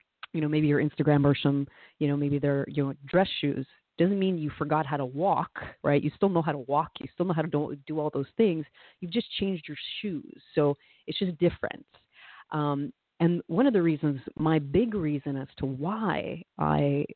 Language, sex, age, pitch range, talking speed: English, female, 30-49, 145-175 Hz, 215 wpm